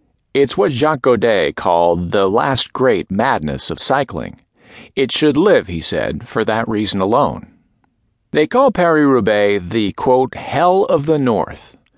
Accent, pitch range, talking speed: American, 95-140 Hz, 145 wpm